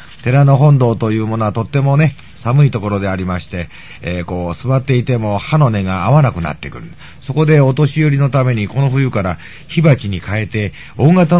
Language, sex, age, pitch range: Japanese, male, 40-59, 110-155 Hz